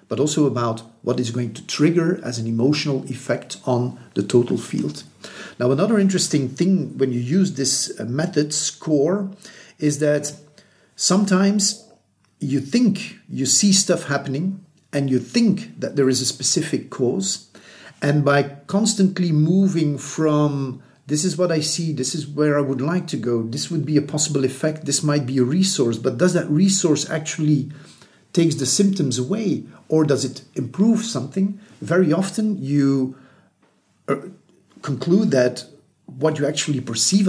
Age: 50-69